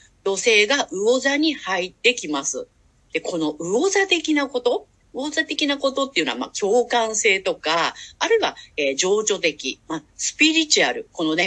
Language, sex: Japanese, female